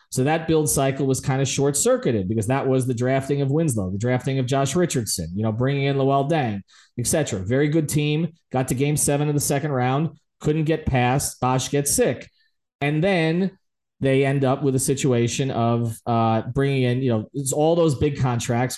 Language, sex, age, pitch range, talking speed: English, male, 30-49, 125-155 Hz, 210 wpm